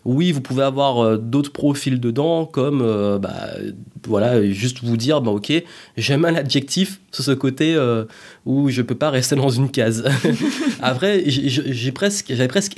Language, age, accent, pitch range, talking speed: French, 20-39, French, 120-150 Hz, 175 wpm